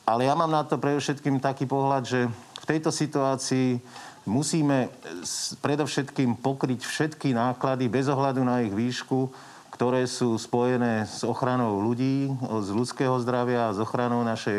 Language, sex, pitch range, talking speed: Slovak, male, 115-130 Hz, 145 wpm